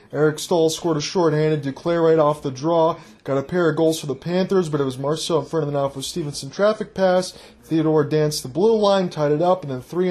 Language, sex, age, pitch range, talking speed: English, male, 20-39, 145-185 Hz, 245 wpm